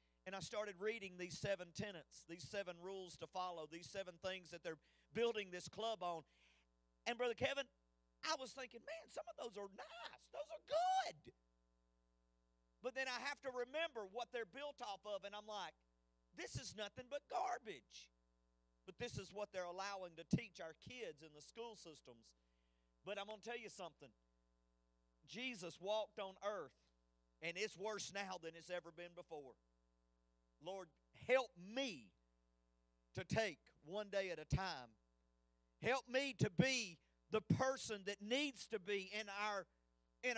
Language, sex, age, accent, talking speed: English, male, 40-59, American, 165 wpm